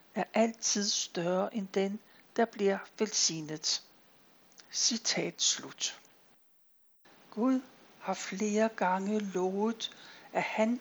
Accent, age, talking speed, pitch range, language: native, 60-79, 95 wpm, 195-235 Hz, Danish